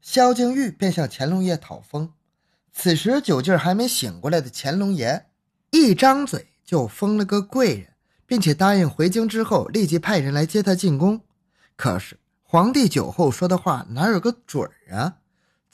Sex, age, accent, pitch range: male, 20-39, native, 130-205 Hz